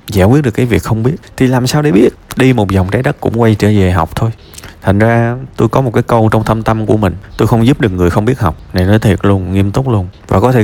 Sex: male